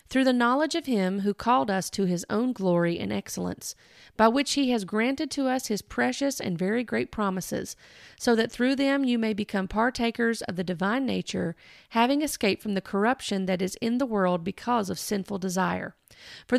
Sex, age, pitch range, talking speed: female, 40-59, 190-240 Hz, 195 wpm